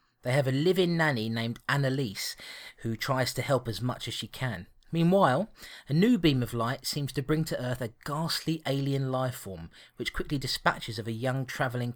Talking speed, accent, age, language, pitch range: 195 wpm, British, 30-49, English, 115-150 Hz